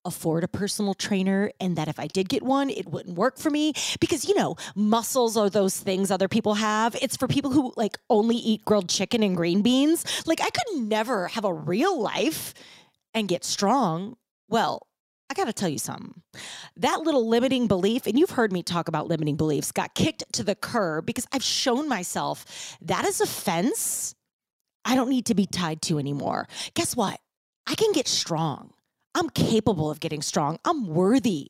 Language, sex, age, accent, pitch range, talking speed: English, female, 30-49, American, 190-275 Hz, 190 wpm